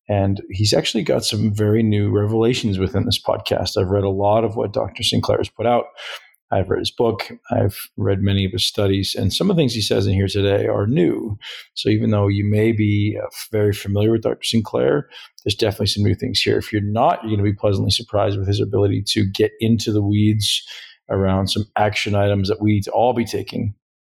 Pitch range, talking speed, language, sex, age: 100-110 Hz, 220 wpm, English, male, 40-59